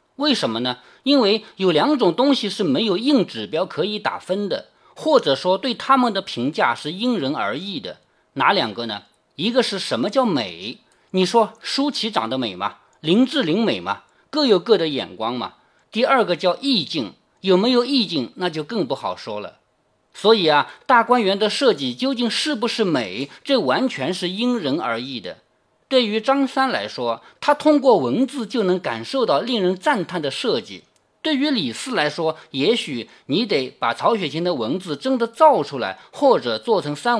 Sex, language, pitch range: male, Chinese, 165-260 Hz